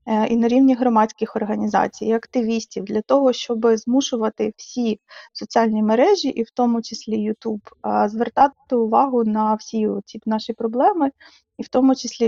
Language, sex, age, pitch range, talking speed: Ukrainian, female, 20-39, 225-250 Hz, 145 wpm